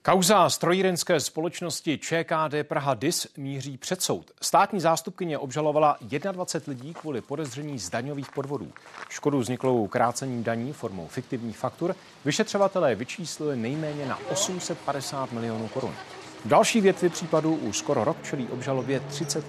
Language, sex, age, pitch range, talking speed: Czech, male, 40-59, 125-165 Hz, 130 wpm